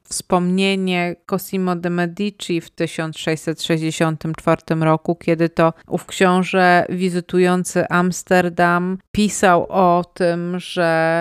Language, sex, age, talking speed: Polish, female, 30-49, 90 wpm